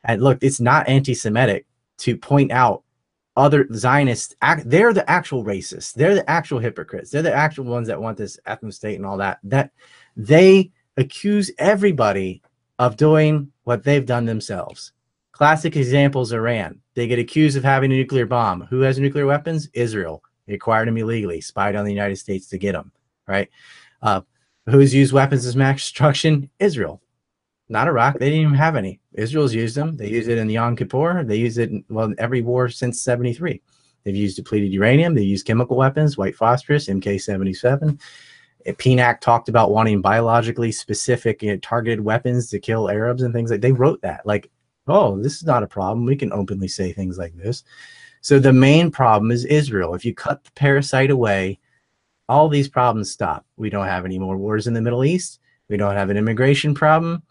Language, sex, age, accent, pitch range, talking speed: English, male, 30-49, American, 105-140 Hz, 190 wpm